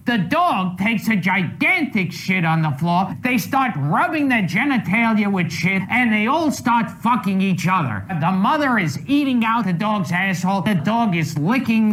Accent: American